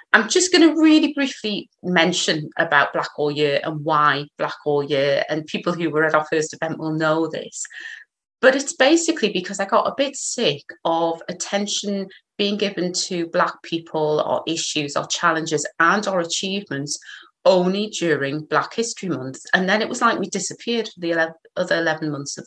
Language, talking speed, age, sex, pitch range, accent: English, 180 wpm, 30-49, female, 150-200 Hz, British